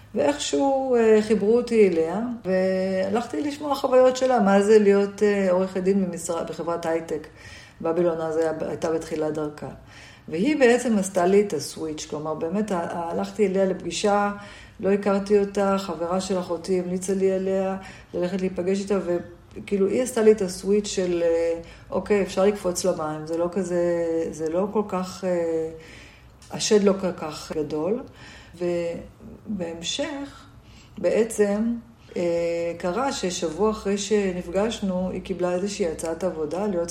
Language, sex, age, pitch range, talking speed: Hebrew, female, 40-59, 170-205 Hz, 130 wpm